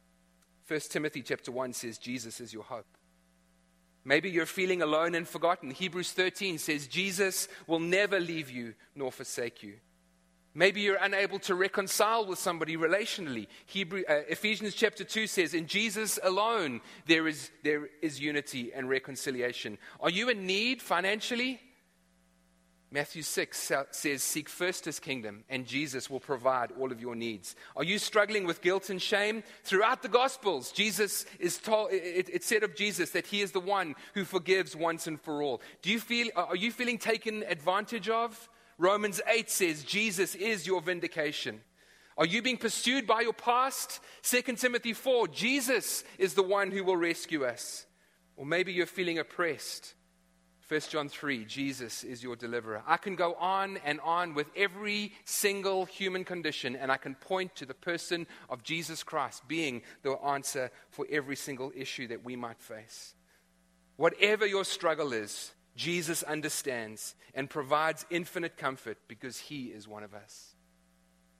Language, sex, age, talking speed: English, male, 30-49, 160 wpm